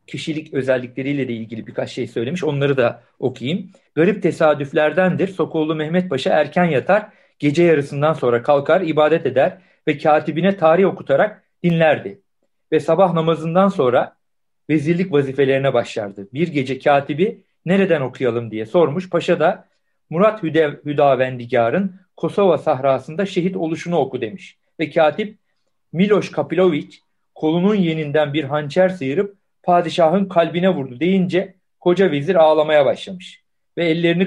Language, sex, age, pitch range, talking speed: Turkish, male, 50-69, 145-185 Hz, 125 wpm